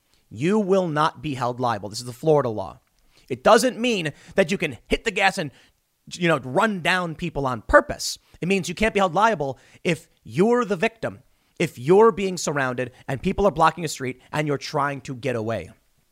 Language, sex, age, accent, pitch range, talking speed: English, male, 30-49, American, 125-190 Hz, 205 wpm